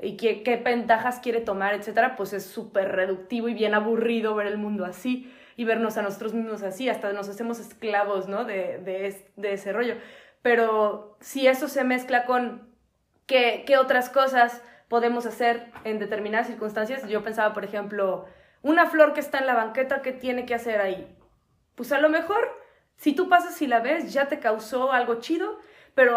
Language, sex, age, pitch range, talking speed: Spanish, female, 20-39, 210-270 Hz, 190 wpm